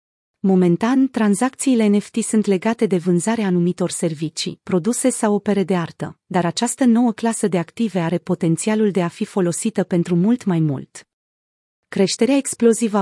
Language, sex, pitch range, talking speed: Romanian, female, 175-225 Hz, 145 wpm